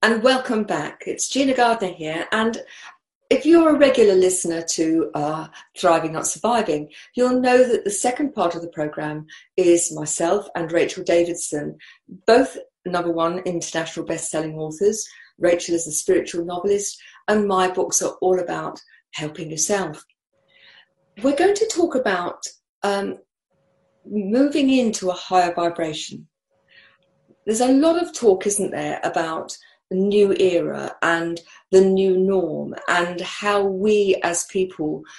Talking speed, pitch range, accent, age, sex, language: 140 wpm, 175-250 Hz, British, 50-69, female, English